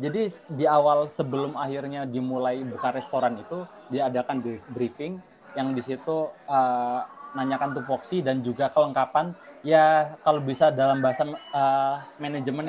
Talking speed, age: 130 wpm, 20-39